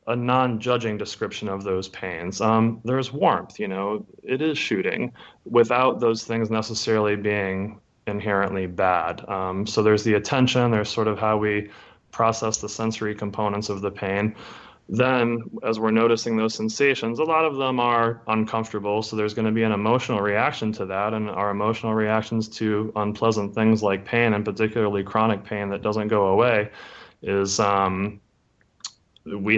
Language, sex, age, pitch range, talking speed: English, male, 20-39, 105-115 Hz, 165 wpm